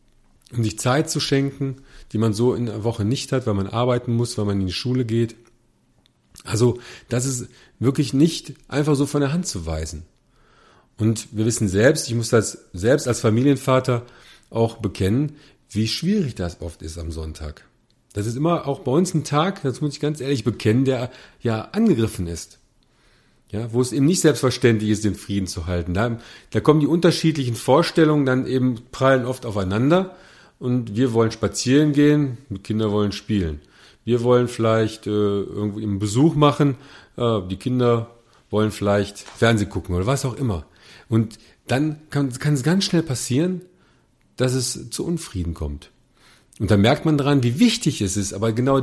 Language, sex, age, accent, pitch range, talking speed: German, male, 40-59, German, 105-140 Hz, 180 wpm